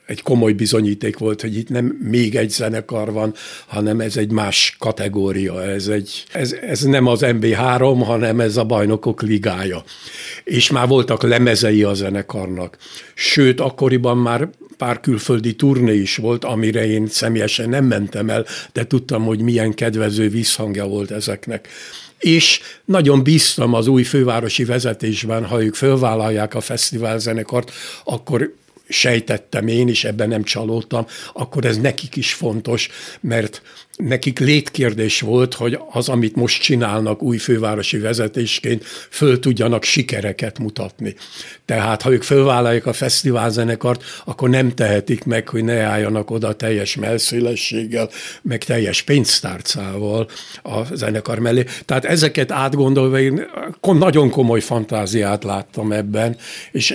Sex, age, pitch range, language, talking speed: male, 60-79, 110-125 Hz, Hungarian, 135 wpm